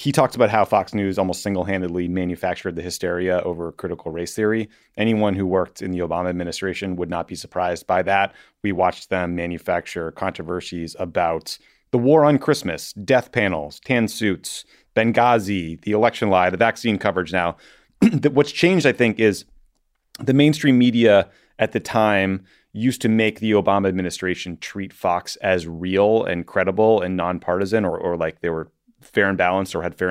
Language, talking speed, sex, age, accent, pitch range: English, 170 wpm, male, 30-49, American, 90-105 Hz